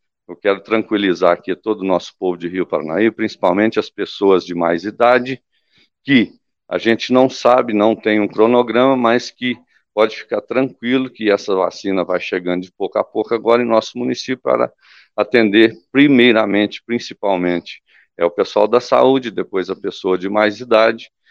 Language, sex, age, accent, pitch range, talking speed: Portuguese, male, 50-69, Brazilian, 95-115 Hz, 165 wpm